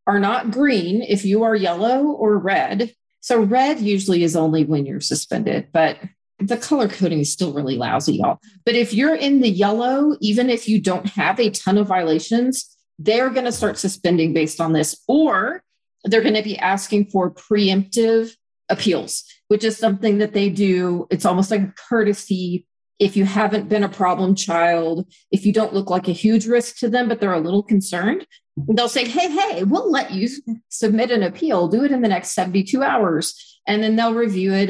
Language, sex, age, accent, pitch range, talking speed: English, female, 40-59, American, 180-230 Hz, 190 wpm